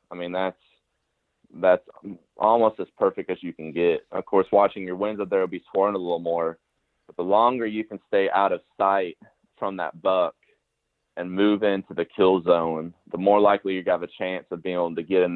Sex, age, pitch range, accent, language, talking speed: male, 20-39, 85-100 Hz, American, English, 210 wpm